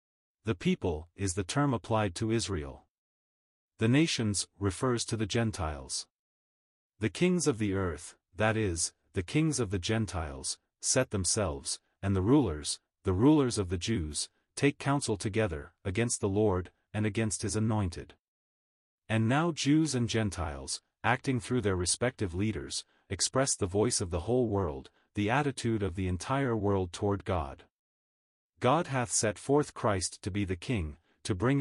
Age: 40-59